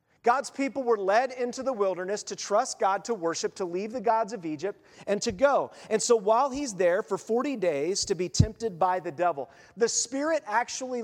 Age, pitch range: 40-59, 180-245 Hz